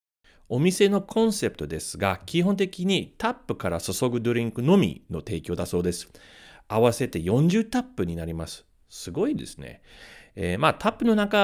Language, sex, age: Japanese, male, 40-59